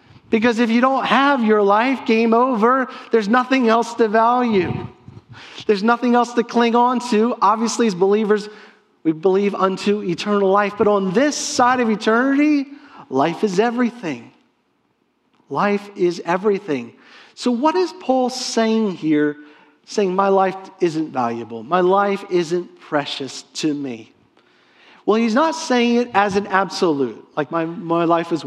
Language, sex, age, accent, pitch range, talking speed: English, male, 40-59, American, 180-230 Hz, 150 wpm